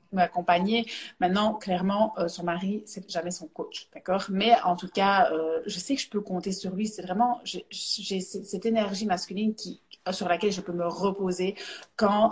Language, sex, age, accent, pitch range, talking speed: French, female, 30-49, French, 175-215 Hz, 190 wpm